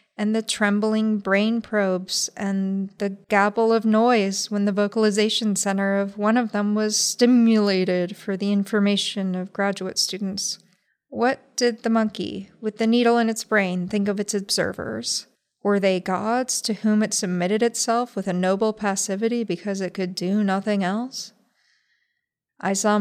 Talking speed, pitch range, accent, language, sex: 155 wpm, 195-235 Hz, American, English, female